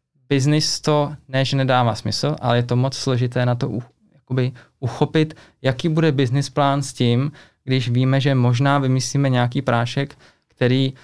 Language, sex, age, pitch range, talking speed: Czech, male, 20-39, 115-135 Hz, 165 wpm